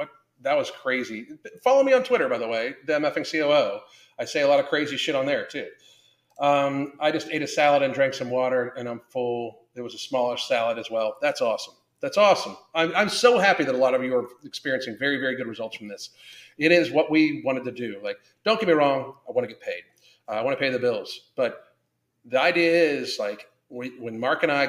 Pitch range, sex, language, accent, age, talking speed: 120-160 Hz, male, English, American, 40-59, 235 wpm